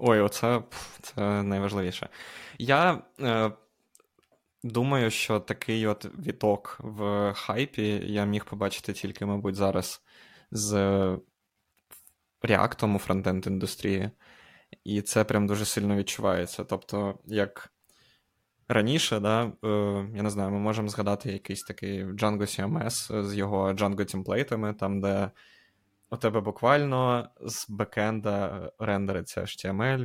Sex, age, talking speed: male, 20-39, 110 wpm